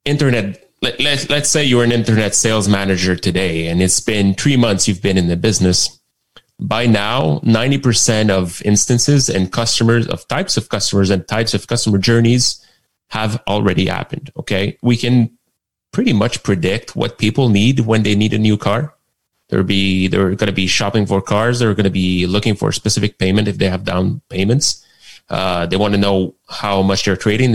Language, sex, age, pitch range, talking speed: English, male, 30-49, 95-115 Hz, 190 wpm